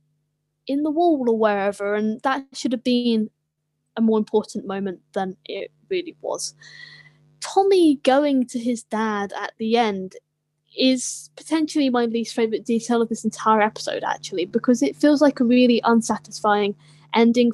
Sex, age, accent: female, 10-29, British